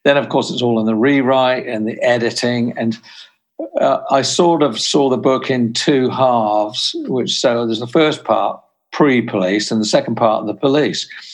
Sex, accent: male, British